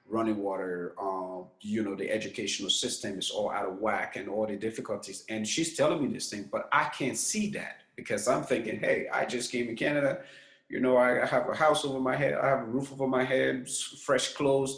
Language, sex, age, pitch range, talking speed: English, male, 30-49, 110-135 Hz, 225 wpm